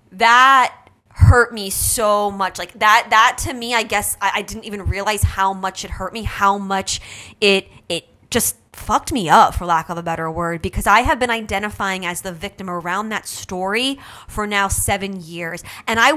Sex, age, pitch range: female, 20-39, 185-225 Hz